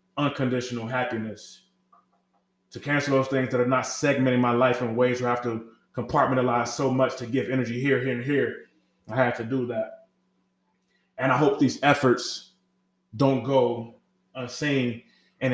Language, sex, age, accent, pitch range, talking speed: English, male, 20-39, American, 120-135 Hz, 160 wpm